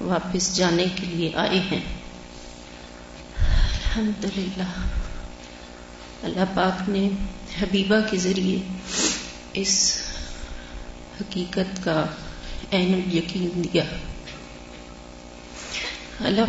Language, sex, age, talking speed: Urdu, female, 30-49, 75 wpm